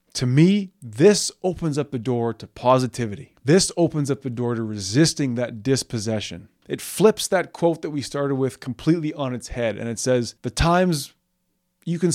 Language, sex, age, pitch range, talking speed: English, male, 20-39, 115-145 Hz, 185 wpm